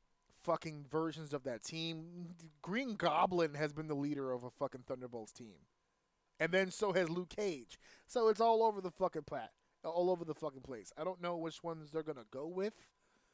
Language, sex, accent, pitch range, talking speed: English, male, American, 145-180 Hz, 195 wpm